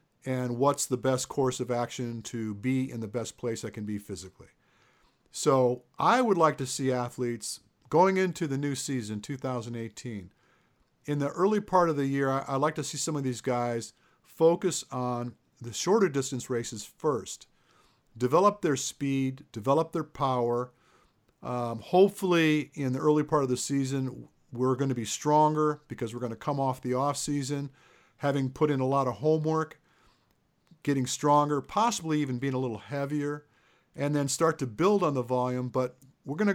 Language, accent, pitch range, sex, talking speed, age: English, American, 125-150 Hz, male, 170 wpm, 50-69